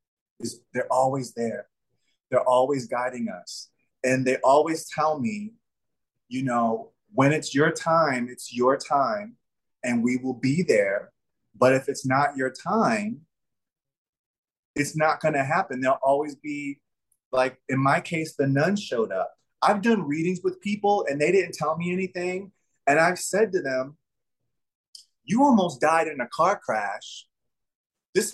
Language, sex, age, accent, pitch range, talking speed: English, male, 30-49, American, 125-185 Hz, 150 wpm